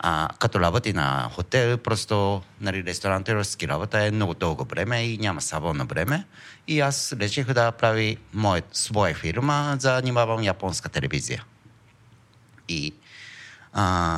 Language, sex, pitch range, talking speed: Bulgarian, male, 95-120 Hz, 125 wpm